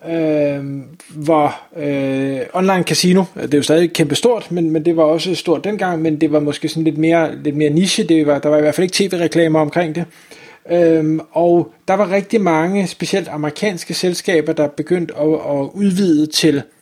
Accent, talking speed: native, 195 wpm